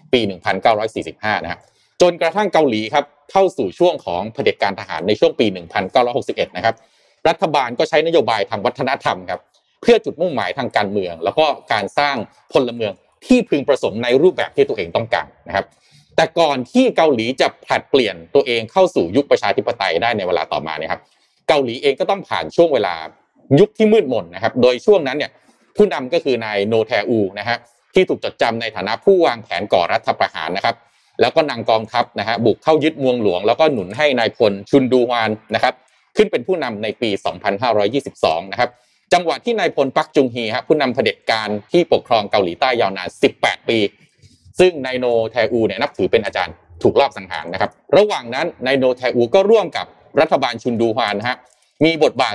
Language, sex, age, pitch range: Thai, male, 30-49, 115-185 Hz